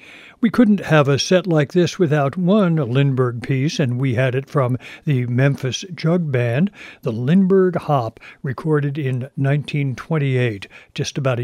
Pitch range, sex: 125-160 Hz, male